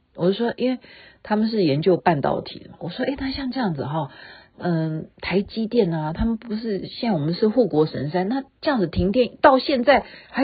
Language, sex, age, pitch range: Chinese, female, 40-59, 165-230 Hz